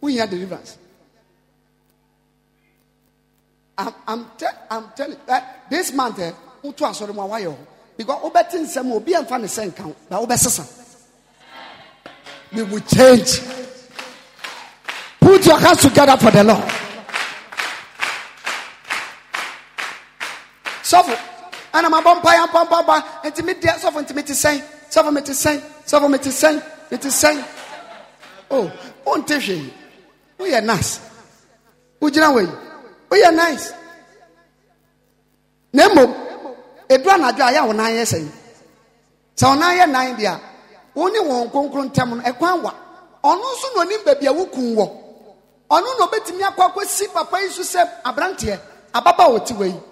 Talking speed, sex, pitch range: 95 wpm, male, 240-350 Hz